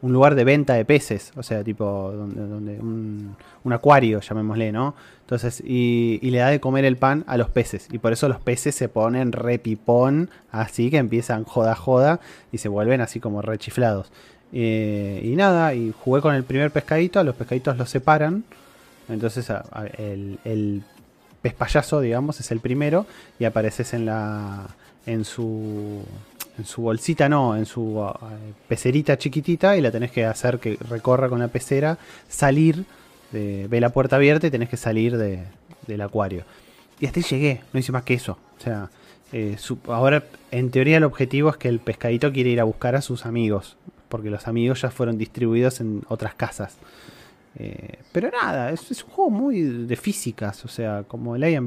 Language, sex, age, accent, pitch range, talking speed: Spanish, male, 20-39, Argentinian, 110-135 Hz, 180 wpm